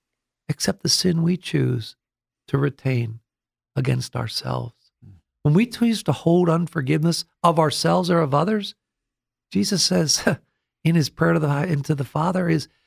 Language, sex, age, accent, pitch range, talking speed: English, male, 50-69, American, 135-175 Hz, 135 wpm